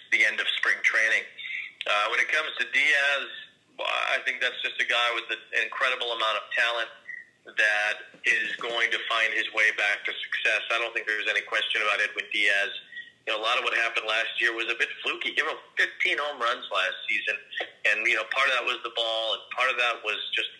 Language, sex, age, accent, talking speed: English, male, 40-59, American, 230 wpm